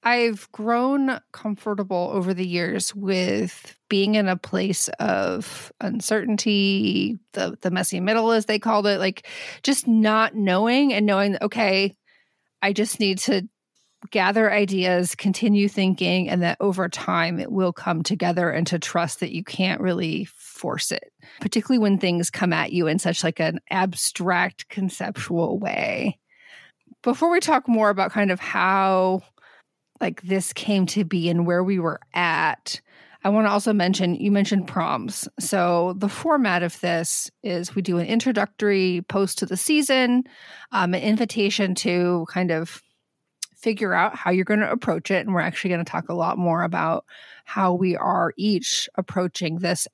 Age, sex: 30-49, female